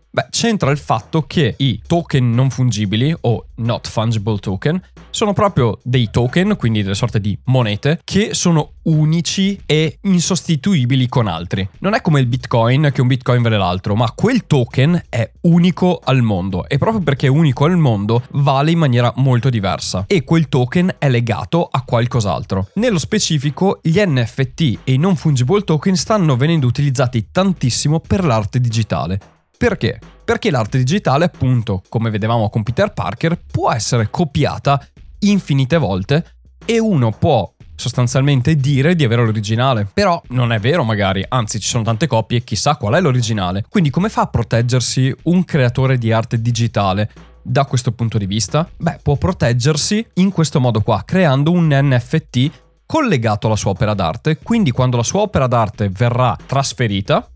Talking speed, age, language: 165 wpm, 20-39, Italian